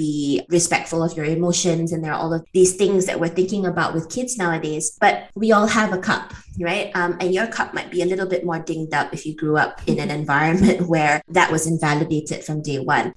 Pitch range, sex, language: 160-185 Hz, female, English